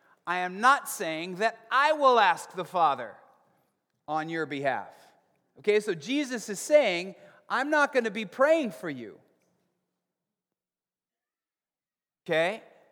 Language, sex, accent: English, male, American